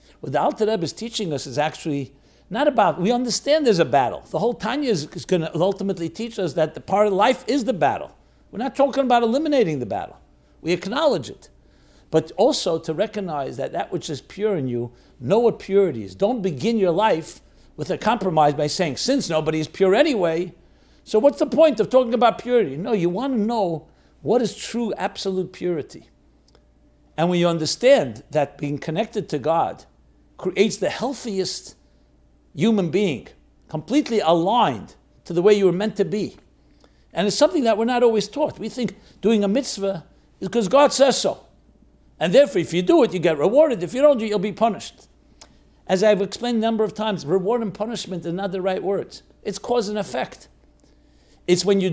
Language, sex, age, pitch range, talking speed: English, male, 60-79, 170-235 Hz, 195 wpm